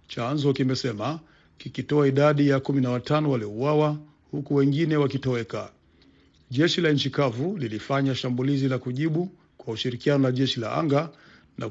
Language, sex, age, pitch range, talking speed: Swahili, male, 50-69, 130-150 Hz, 125 wpm